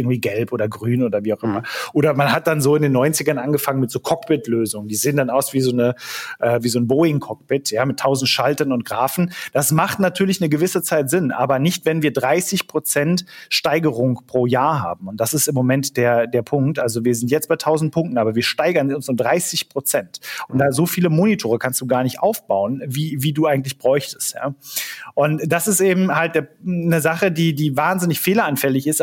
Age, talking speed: 30-49, 220 wpm